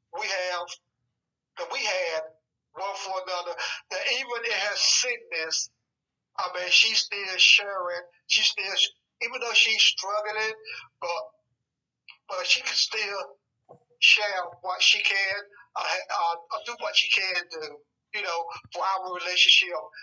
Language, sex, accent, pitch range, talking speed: English, male, American, 180-220 Hz, 140 wpm